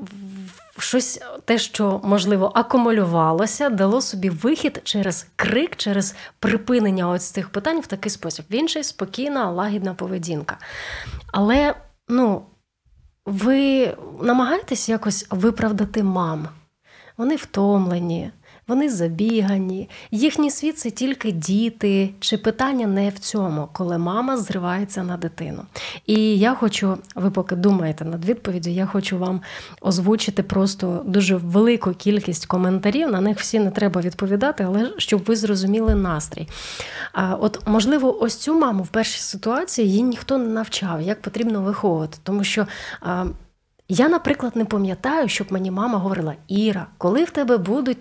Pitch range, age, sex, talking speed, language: 190-240 Hz, 30-49, female, 130 wpm, Ukrainian